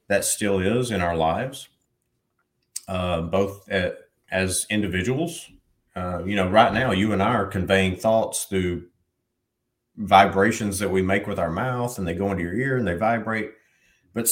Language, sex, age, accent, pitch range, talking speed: English, male, 40-59, American, 90-120 Hz, 165 wpm